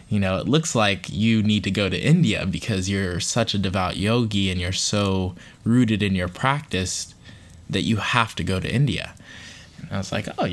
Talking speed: 205 wpm